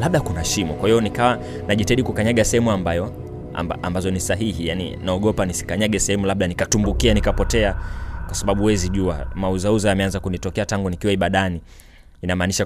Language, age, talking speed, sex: Swahili, 20-39, 150 wpm, male